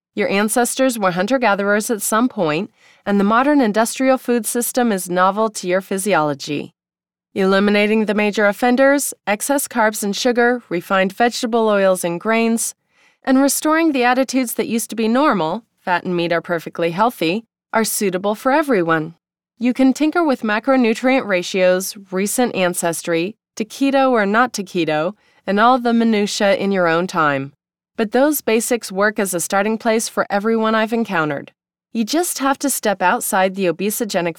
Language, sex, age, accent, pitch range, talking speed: English, female, 20-39, American, 185-250 Hz, 155 wpm